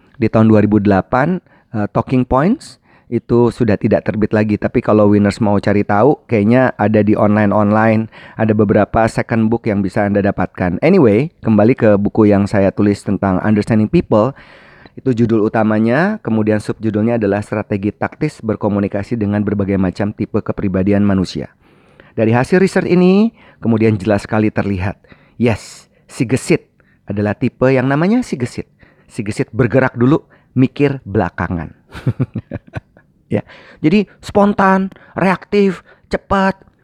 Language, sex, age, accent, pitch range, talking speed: Indonesian, male, 30-49, native, 105-145 Hz, 135 wpm